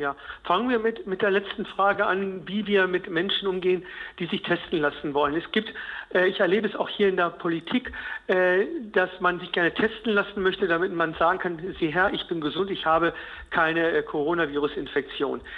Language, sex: German, male